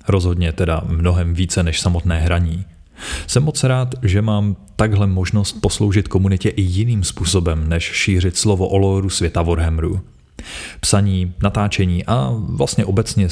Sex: male